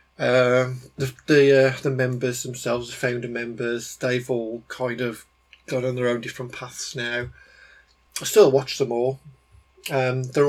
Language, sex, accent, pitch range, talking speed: English, male, British, 115-140 Hz, 160 wpm